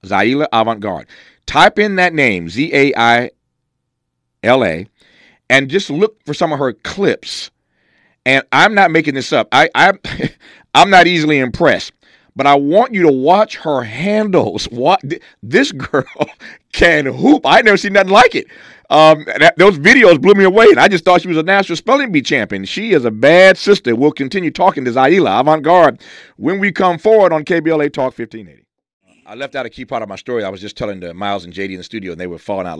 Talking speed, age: 200 wpm, 40-59